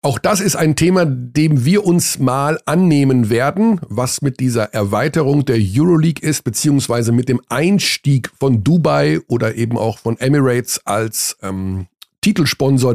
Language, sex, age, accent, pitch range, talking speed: German, male, 50-69, German, 115-145 Hz, 150 wpm